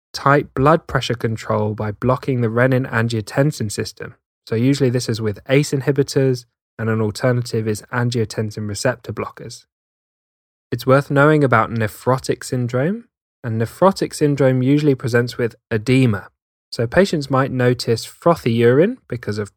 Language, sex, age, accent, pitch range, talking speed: English, male, 10-29, British, 110-130 Hz, 135 wpm